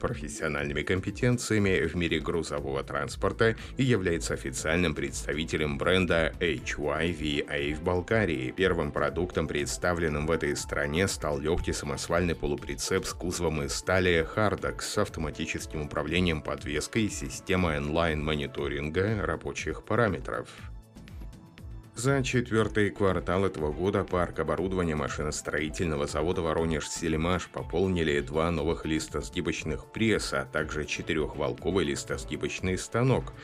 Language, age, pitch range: Russian, 30-49, 75-95 Hz